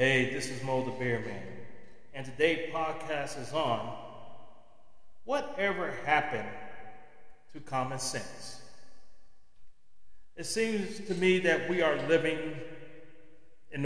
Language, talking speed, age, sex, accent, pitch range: English, 115 wpm, 40-59, male, American, 130-160 Hz